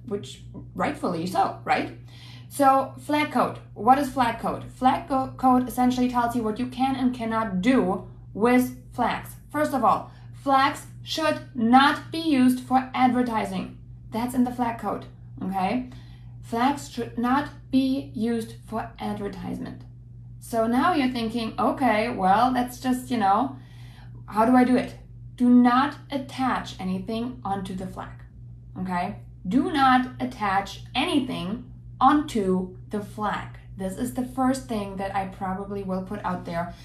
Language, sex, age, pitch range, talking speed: English, female, 20-39, 175-255 Hz, 145 wpm